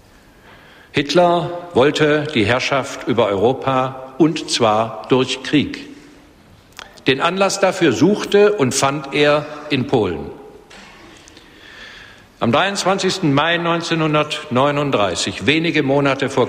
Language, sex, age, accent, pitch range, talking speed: German, male, 60-79, German, 130-165 Hz, 95 wpm